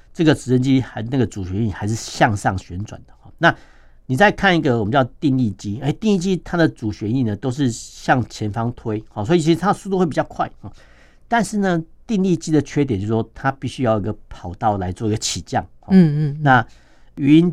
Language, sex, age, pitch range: Chinese, male, 50-69, 105-140 Hz